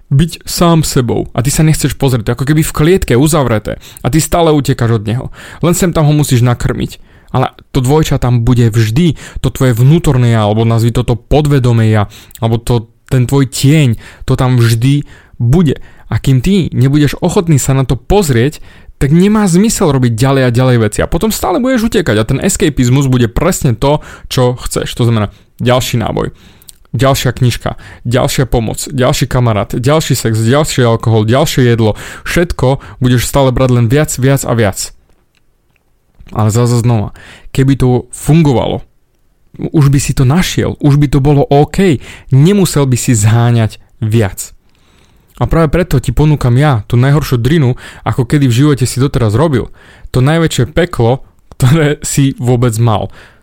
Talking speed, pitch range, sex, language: 165 wpm, 115-150 Hz, male, Slovak